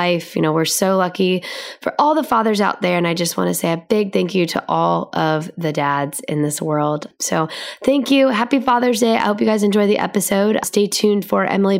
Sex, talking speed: female, 235 wpm